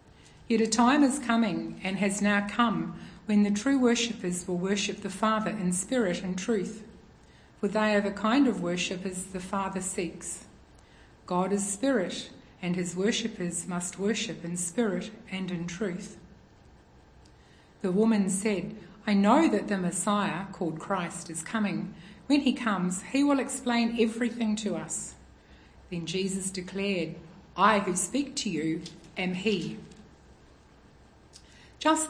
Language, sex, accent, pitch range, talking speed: English, female, Australian, 180-225 Hz, 140 wpm